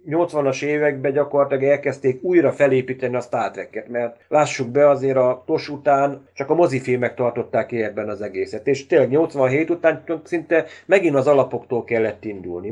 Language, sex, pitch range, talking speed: Hungarian, male, 125-150 Hz, 155 wpm